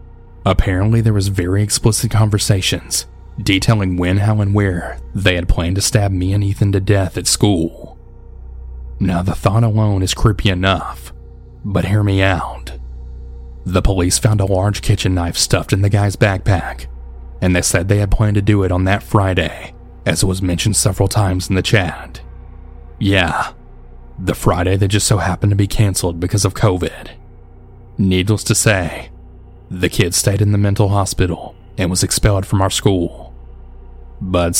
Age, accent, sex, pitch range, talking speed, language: 30-49, American, male, 85-105 Hz, 170 wpm, English